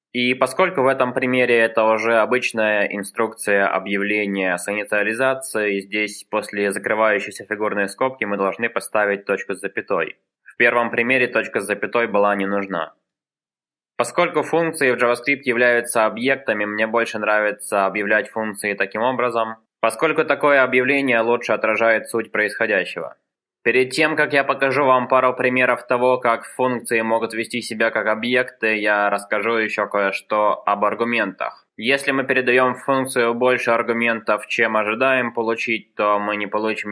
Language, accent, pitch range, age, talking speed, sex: Russian, native, 105-125 Hz, 20-39, 140 wpm, male